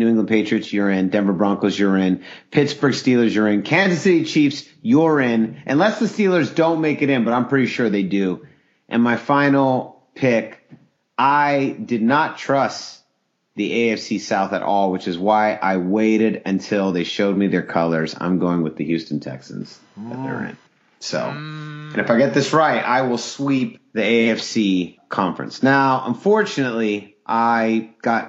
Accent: American